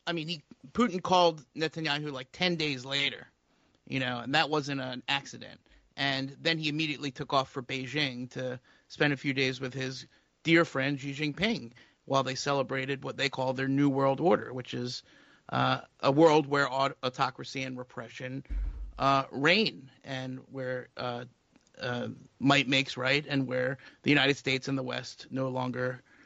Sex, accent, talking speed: male, American, 170 wpm